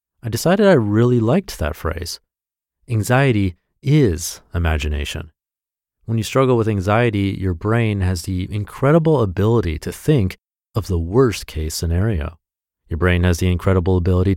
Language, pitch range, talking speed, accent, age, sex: English, 85-115 Hz, 140 wpm, American, 30-49, male